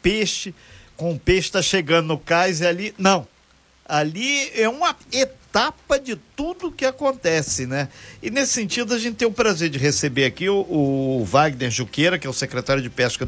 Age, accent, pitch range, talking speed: 50-69, Brazilian, 145-210 Hz, 185 wpm